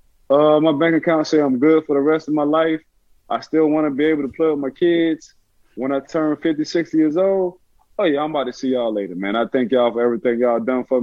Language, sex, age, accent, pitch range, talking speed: English, male, 20-39, American, 120-150 Hz, 260 wpm